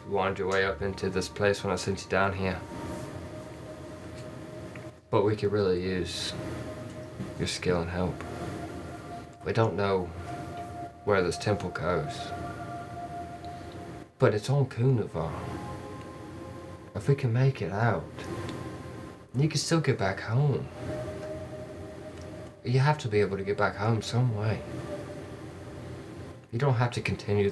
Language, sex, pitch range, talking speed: English, male, 95-115 Hz, 135 wpm